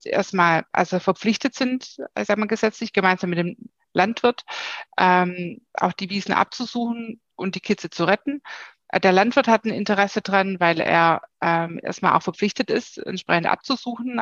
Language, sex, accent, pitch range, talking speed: German, female, German, 185-225 Hz, 155 wpm